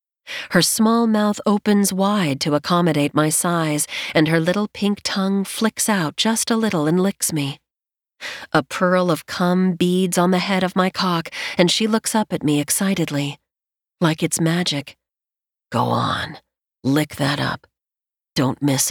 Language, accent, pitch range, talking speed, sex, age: English, American, 150-190 Hz, 160 wpm, female, 40-59